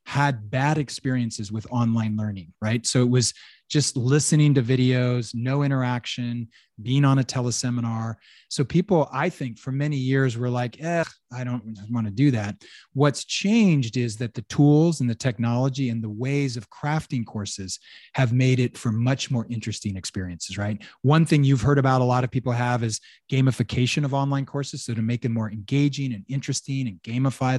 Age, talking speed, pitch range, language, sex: 30-49, 185 wpm, 115-140 Hz, English, male